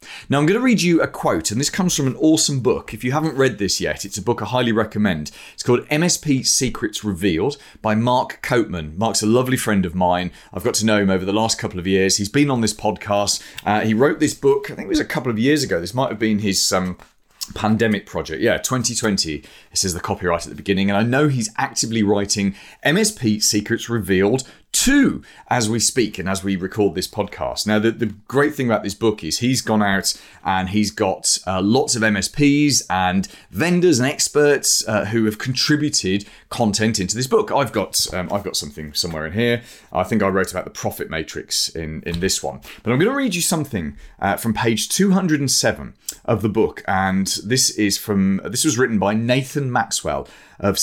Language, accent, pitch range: English, British, 95-130 Hz